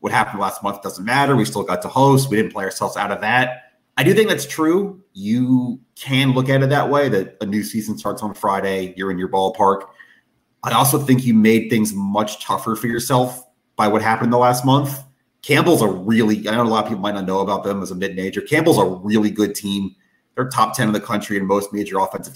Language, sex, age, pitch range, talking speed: English, male, 30-49, 95-125 Hz, 240 wpm